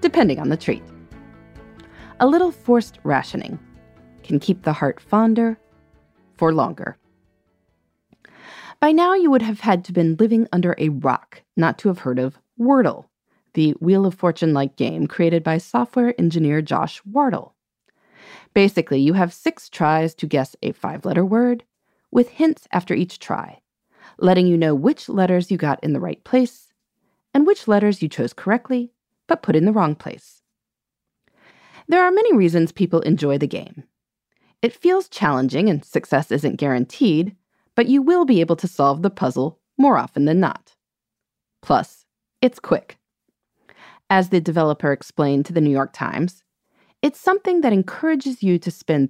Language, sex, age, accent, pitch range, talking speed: English, female, 30-49, American, 155-240 Hz, 160 wpm